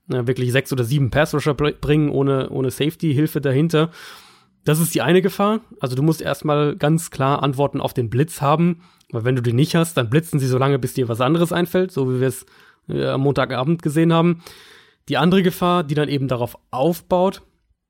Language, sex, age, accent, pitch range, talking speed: German, male, 30-49, German, 130-155 Hz, 195 wpm